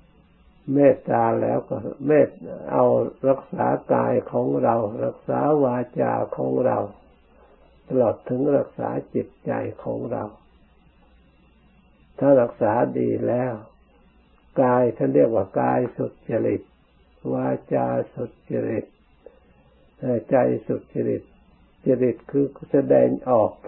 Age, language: 60-79, Thai